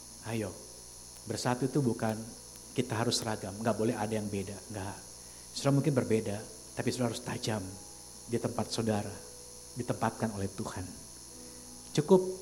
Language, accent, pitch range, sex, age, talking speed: Indonesian, native, 100-125 Hz, male, 50-69, 130 wpm